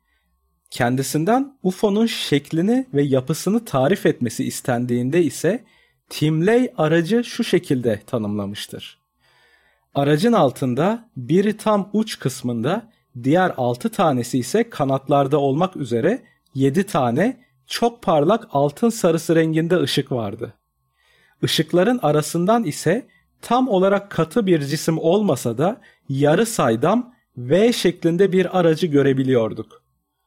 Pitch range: 135-195 Hz